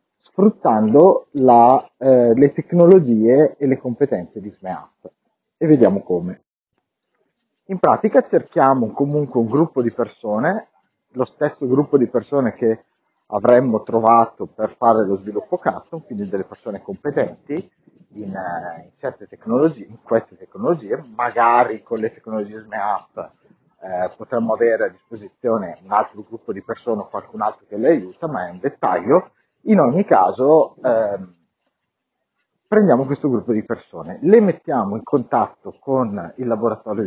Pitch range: 110-145 Hz